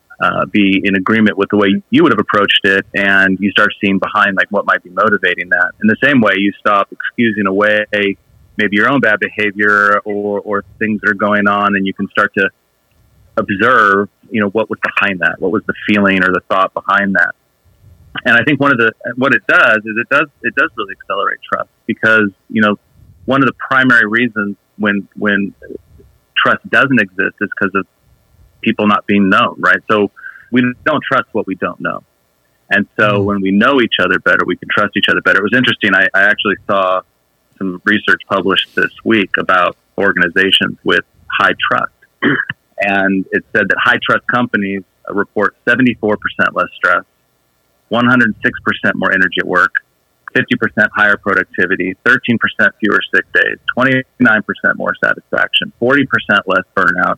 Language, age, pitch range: English, 30-49, 95-110 Hz